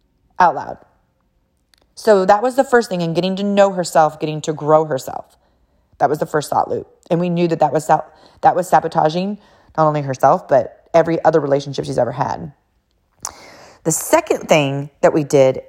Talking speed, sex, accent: 180 wpm, female, American